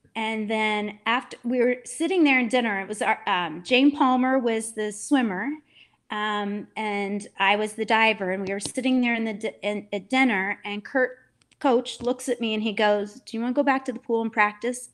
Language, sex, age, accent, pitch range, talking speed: English, female, 30-49, American, 215-265 Hz, 215 wpm